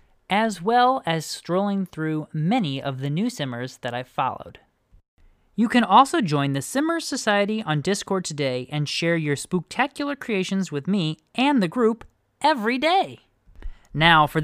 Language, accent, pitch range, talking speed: English, American, 155-250 Hz, 155 wpm